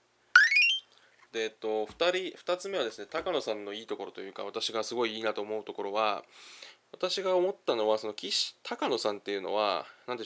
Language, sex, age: Japanese, male, 20-39